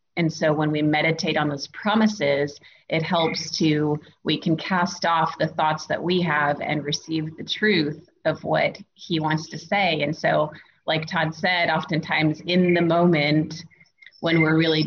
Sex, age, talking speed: female, 30-49, 170 wpm